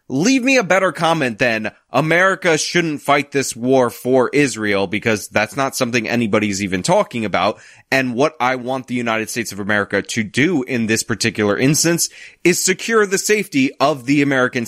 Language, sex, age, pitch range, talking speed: English, male, 20-39, 115-155 Hz, 175 wpm